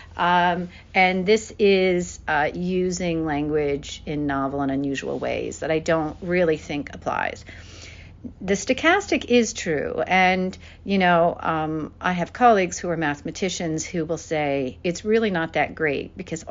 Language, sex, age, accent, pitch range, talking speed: English, female, 50-69, American, 150-185 Hz, 150 wpm